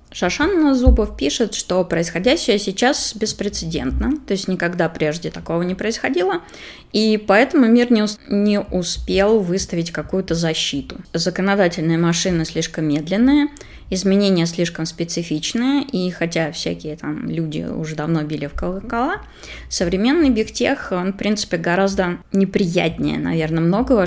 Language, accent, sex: Russian, native, female